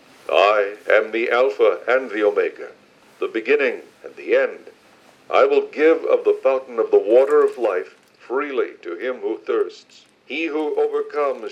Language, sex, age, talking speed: English, male, 60-79, 160 wpm